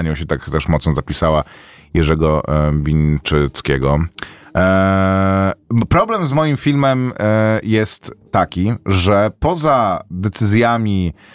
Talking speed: 95 wpm